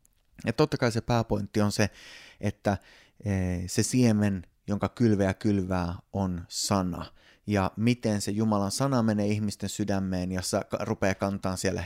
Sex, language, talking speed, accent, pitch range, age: male, Finnish, 135 wpm, native, 100-115 Hz, 20-39